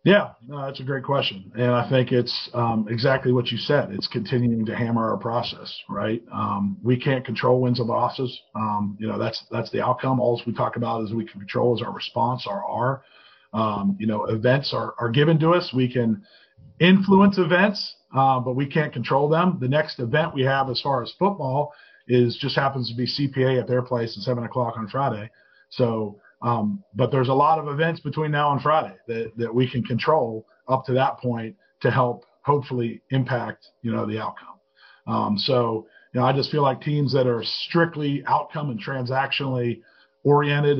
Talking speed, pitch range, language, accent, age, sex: 200 wpm, 120-140 Hz, English, American, 40-59, male